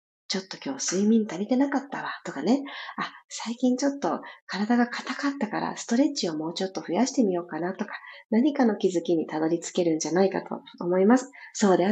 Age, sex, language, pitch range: 40-59, female, Japanese, 190-270 Hz